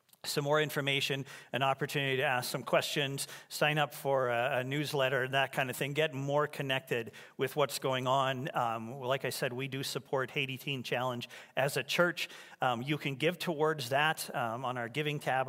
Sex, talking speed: male, 195 wpm